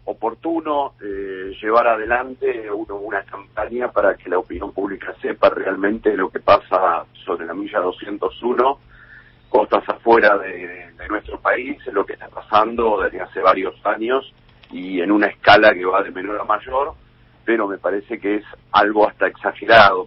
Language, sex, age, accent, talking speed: Spanish, male, 50-69, Argentinian, 160 wpm